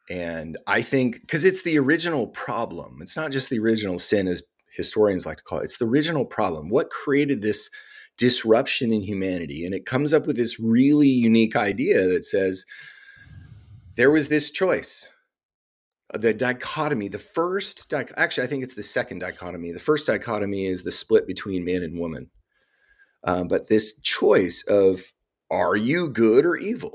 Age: 30-49